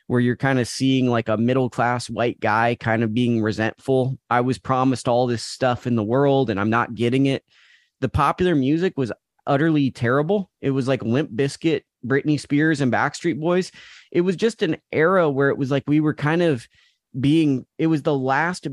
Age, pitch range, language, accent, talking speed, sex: 20-39, 120-150 Hz, English, American, 200 wpm, male